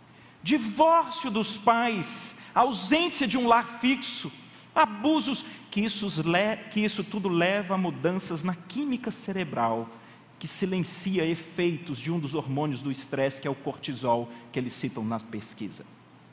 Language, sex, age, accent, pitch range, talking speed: Portuguese, male, 40-59, Brazilian, 130-175 Hz, 135 wpm